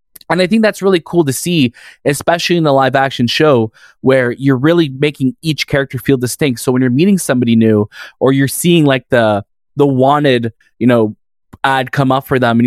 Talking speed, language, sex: 205 wpm, English, male